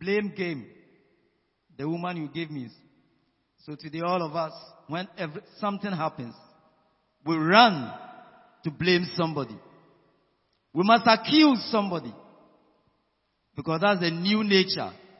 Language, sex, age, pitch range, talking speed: English, male, 50-69, 160-210 Hz, 115 wpm